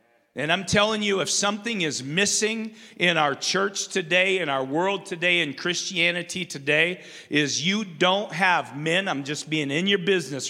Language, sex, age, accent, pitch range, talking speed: English, male, 50-69, American, 140-190 Hz, 170 wpm